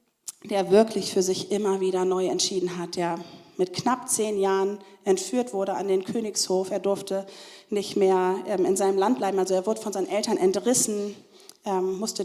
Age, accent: 30-49, German